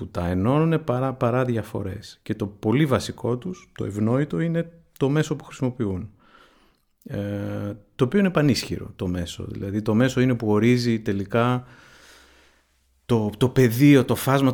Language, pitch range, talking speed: Greek, 100-135 Hz, 155 wpm